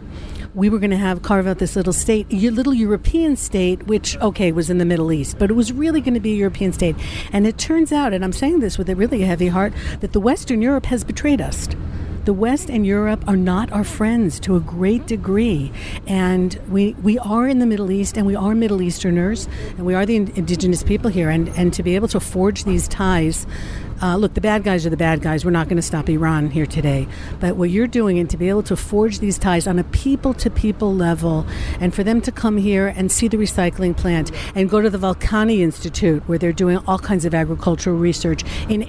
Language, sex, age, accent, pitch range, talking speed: English, female, 60-79, American, 180-215 Hz, 235 wpm